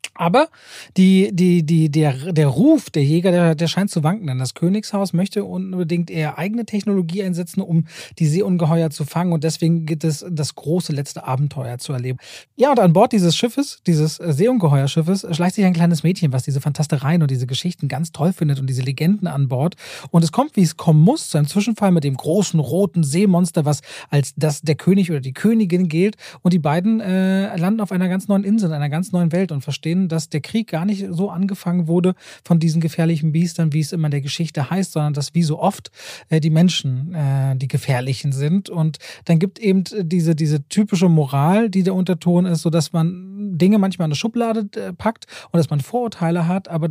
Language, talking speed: German, 205 wpm